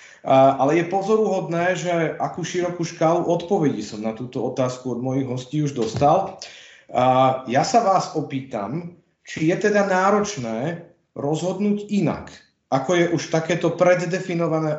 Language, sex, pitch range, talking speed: Slovak, male, 140-170 Hz, 130 wpm